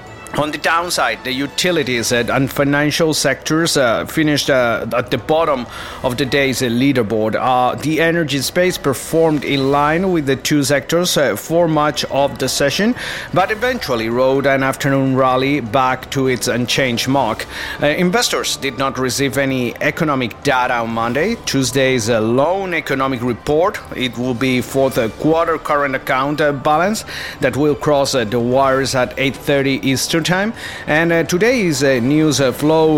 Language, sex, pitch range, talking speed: English, male, 130-150 Hz, 145 wpm